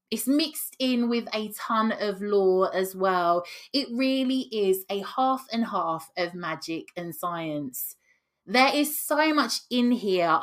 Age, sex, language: 20-39, female, English